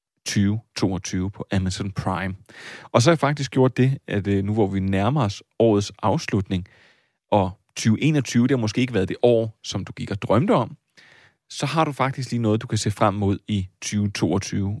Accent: native